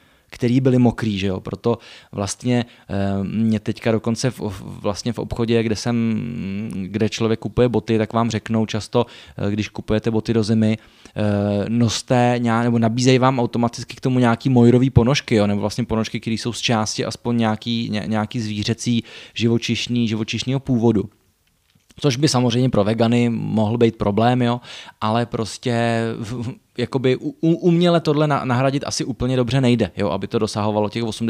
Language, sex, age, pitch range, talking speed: Czech, male, 20-39, 110-125 Hz, 155 wpm